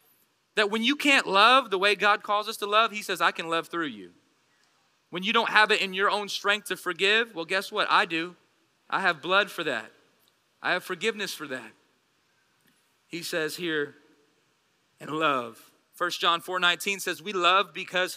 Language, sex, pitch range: English, male, 175-210 Hz